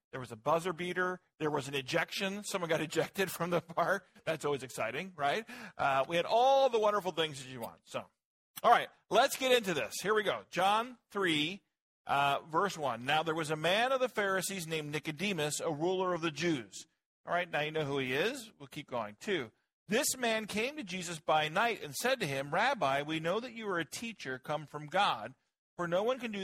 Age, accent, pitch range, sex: 50-69, American, 145-200 Hz, male